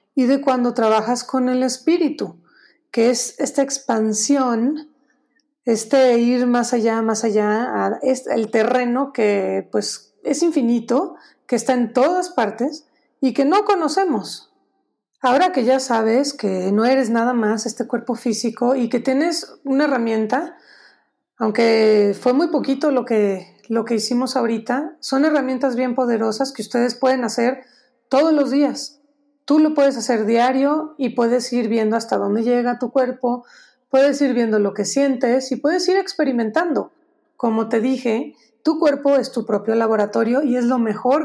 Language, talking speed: Spanish, 155 wpm